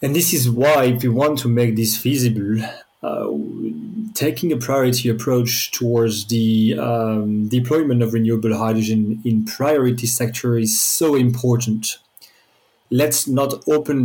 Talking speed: 135 wpm